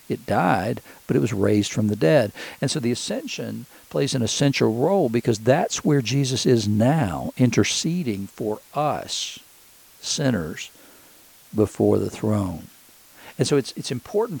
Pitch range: 105-130 Hz